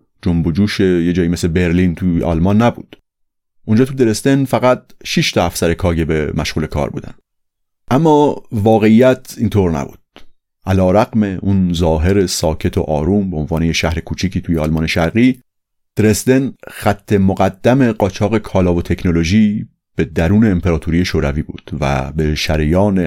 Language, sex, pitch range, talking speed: Persian, male, 85-105 Hz, 140 wpm